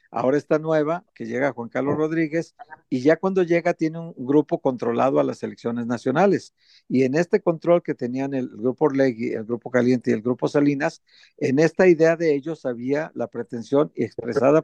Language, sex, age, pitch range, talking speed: Spanish, male, 50-69, 130-155 Hz, 185 wpm